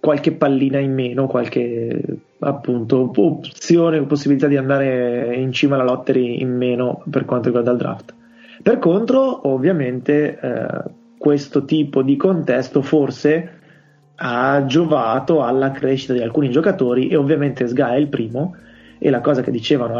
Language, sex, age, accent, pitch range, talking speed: Italian, male, 20-39, native, 130-155 Hz, 145 wpm